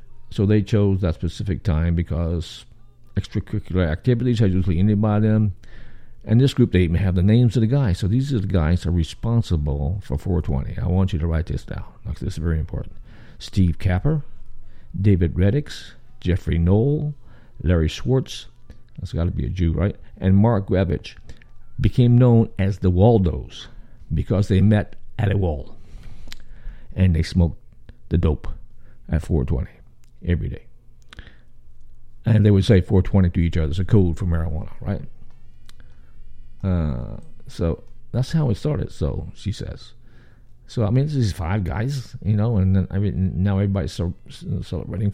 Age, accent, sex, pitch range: 50-69, American, male, 90-115 Hz